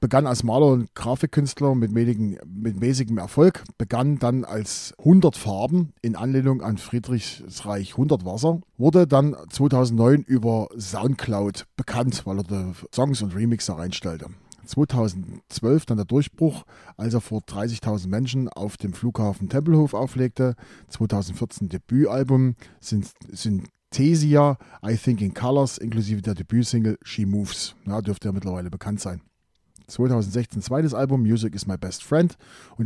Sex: male